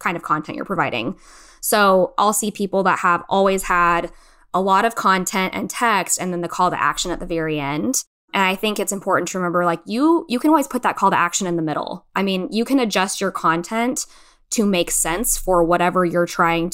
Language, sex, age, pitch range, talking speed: English, female, 20-39, 170-205 Hz, 225 wpm